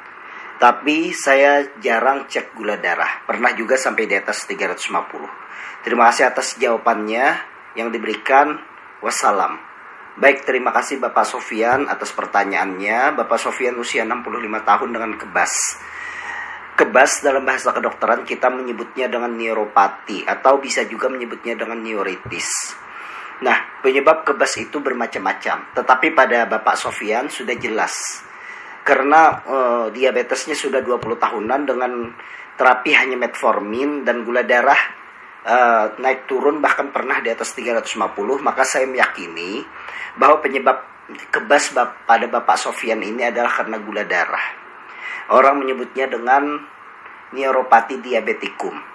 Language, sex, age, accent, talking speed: Indonesian, male, 40-59, native, 120 wpm